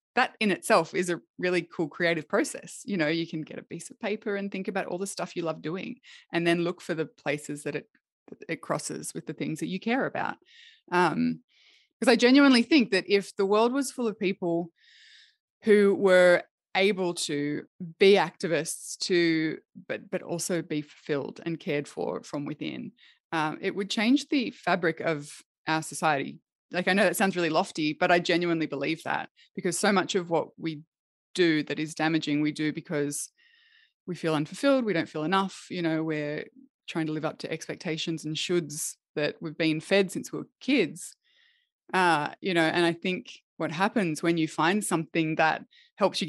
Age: 20-39